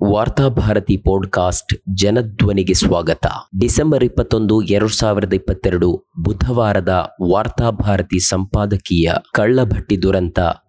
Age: 20-39